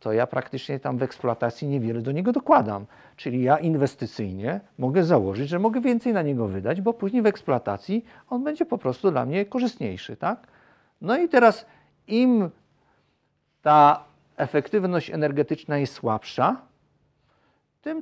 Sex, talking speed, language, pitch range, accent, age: male, 145 wpm, Polish, 120-170 Hz, native, 50-69